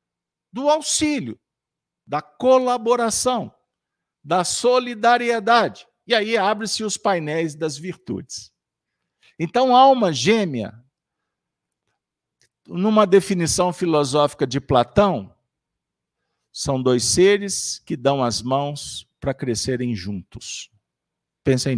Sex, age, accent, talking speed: male, 50-69, Brazilian, 90 wpm